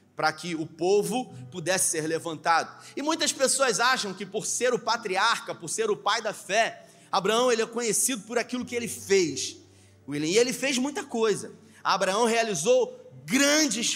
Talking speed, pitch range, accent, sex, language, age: 165 wpm, 200-255 Hz, Brazilian, male, Portuguese, 30-49